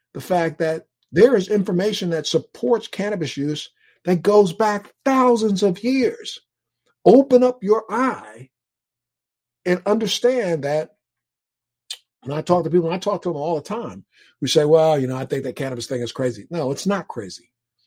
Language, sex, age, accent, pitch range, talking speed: English, male, 50-69, American, 130-180 Hz, 175 wpm